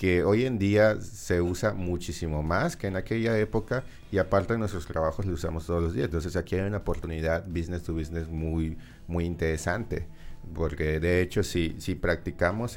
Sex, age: male, 30-49